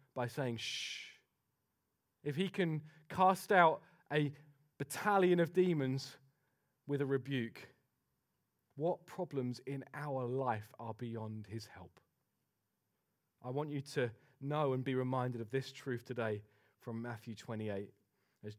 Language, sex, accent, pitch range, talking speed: English, male, British, 115-145 Hz, 130 wpm